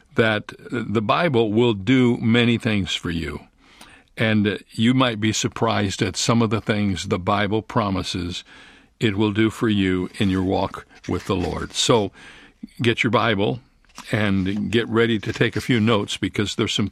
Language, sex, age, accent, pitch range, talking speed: English, male, 60-79, American, 100-120 Hz, 170 wpm